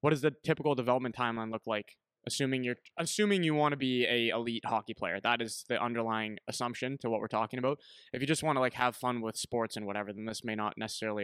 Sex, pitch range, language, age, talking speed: male, 110-125 Hz, English, 20-39, 245 wpm